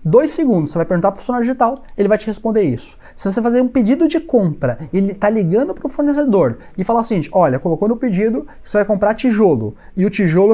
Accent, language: Brazilian, Portuguese